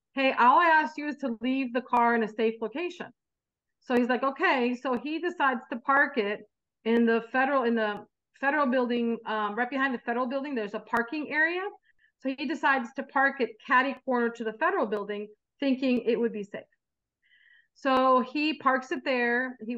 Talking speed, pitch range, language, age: 195 wpm, 225-265 Hz, English, 40-59